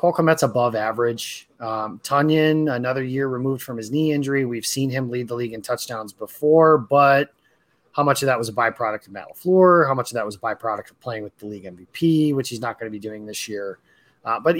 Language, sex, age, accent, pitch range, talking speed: English, male, 30-49, American, 115-150 Hz, 235 wpm